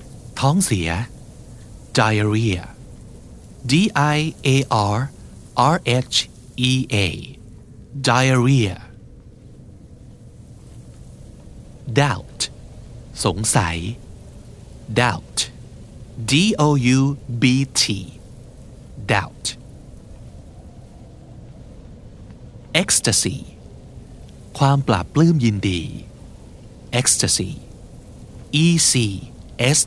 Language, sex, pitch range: Thai, male, 110-130 Hz